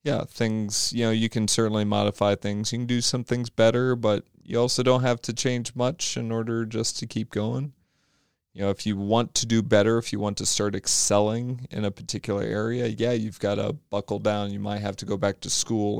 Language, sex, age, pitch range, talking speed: English, male, 30-49, 95-110 Hz, 230 wpm